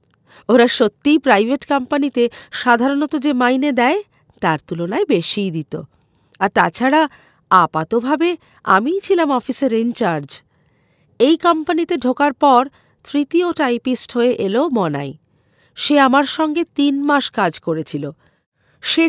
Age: 50-69